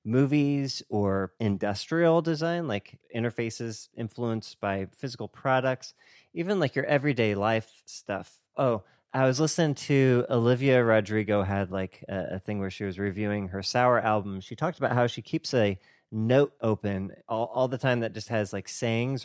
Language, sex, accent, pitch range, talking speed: English, male, American, 105-130 Hz, 165 wpm